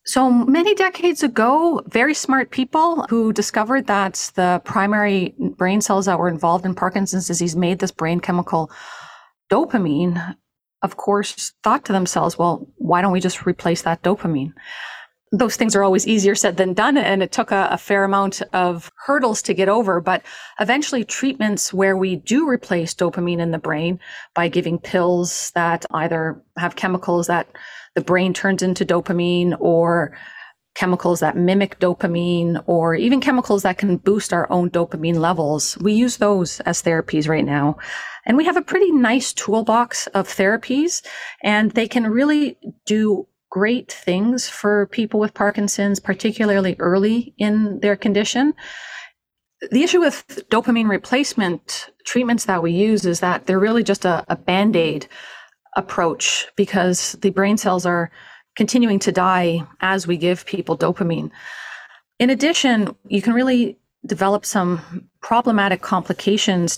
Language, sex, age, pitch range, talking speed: English, female, 30-49, 175-225 Hz, 150 wpm